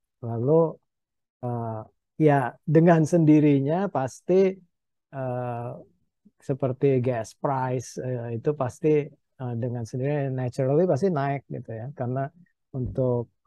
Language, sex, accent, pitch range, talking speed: Indonesian, male, native, 120-140 Hz, 105 wpm